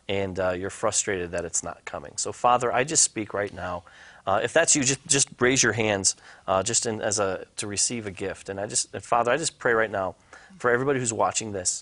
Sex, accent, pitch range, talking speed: male, American, 95-115 Hz, 240 wpm